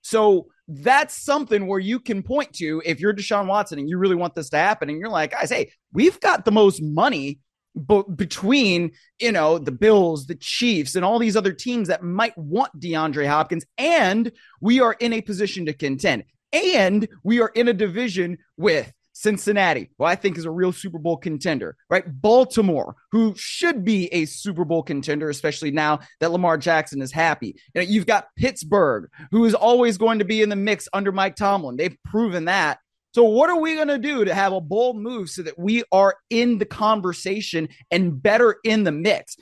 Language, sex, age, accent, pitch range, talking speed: English, male, 30-49, American, 170-220 Hz, 200 wpm